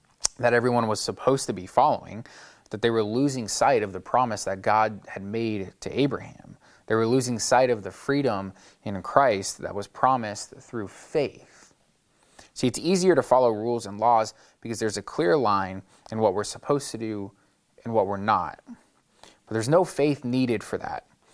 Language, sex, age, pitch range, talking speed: English, male, 20-39, 105-125 Hz, 185 wpm